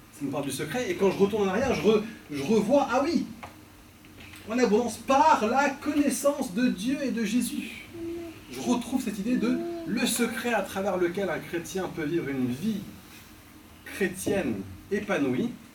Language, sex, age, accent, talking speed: French, male, 30-49, French, 170 wpm